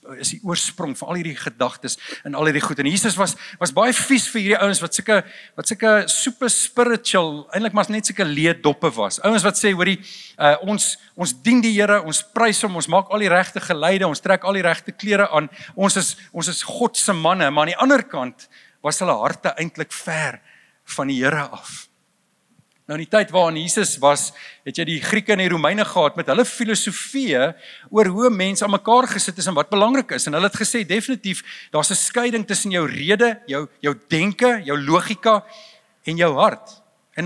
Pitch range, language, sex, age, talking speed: 165-215 Hz, English, male, 50-69, 205 wpm